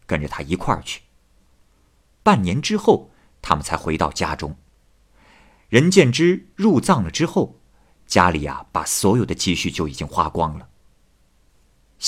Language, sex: Chinese, male